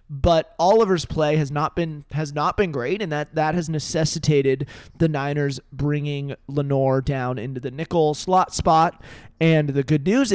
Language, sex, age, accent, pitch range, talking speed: English, male, 30-49, American, 135-165 Hz, 170 wpm